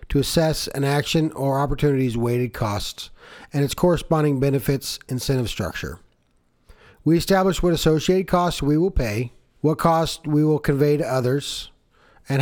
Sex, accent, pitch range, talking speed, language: male, American, 120-155 Hz, 145 wpm, English